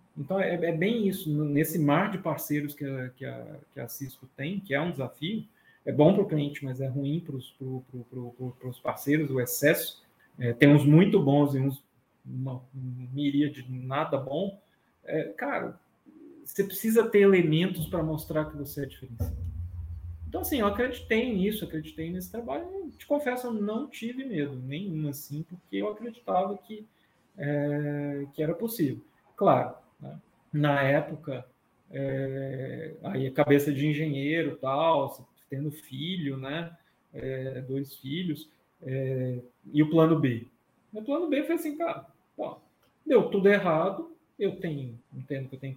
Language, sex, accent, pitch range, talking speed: Portuguese, male, Brazilian, 135-190 Hz, 160 wpm